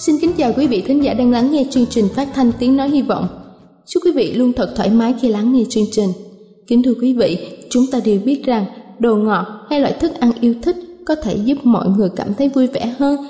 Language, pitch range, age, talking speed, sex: Vietnamese, 215-275 Hz, 20-39, 255 wpm, female